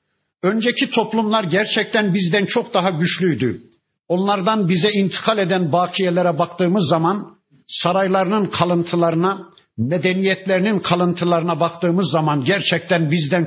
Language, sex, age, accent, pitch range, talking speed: Turkish, male, 60-79, native, 165-195 Hz, 100 wpm